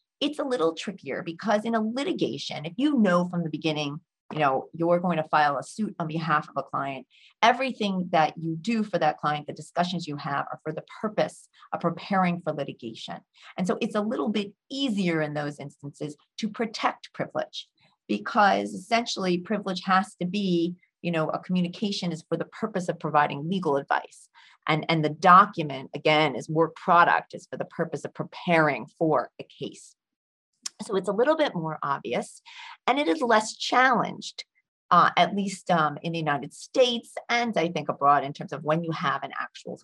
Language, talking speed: English, 190 wpm